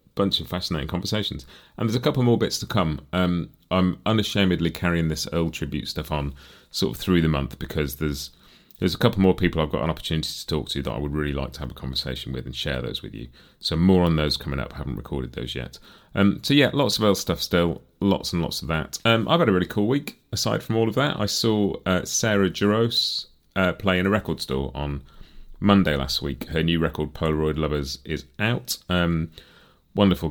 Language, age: English, 30-49